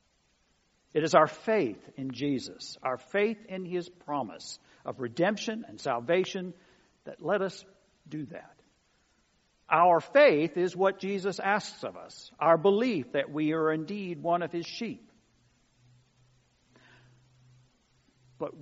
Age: 60-79